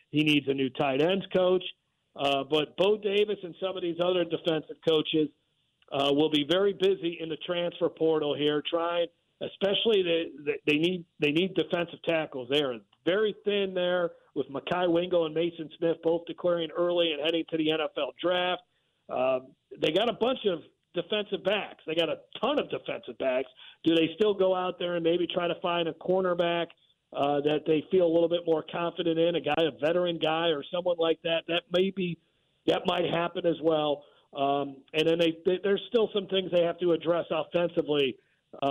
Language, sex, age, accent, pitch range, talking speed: English, male, 50-69, American, 155-180 Hz, 195 wpm